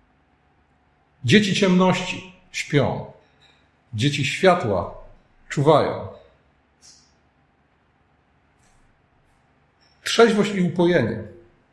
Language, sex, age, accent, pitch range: Polish, male, 40-59, native, 125-175 Hz